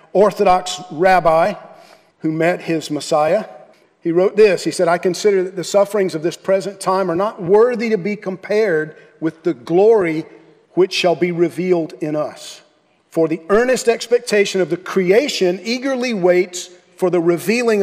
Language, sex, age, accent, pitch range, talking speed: English, male, 50-69, American, 160-200 Hz, 160 wpm